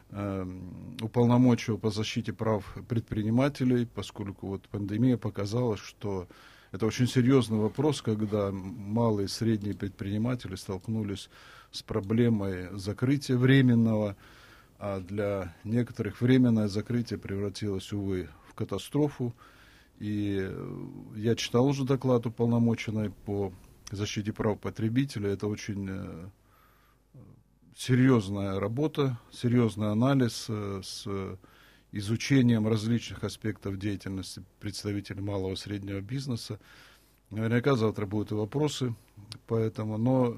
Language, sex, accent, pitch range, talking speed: Russian, male, native, 100-125 Hz, 100 wpm